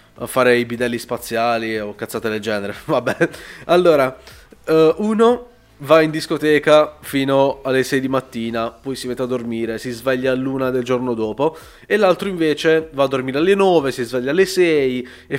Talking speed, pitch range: 170 wpm, 120-155 Hz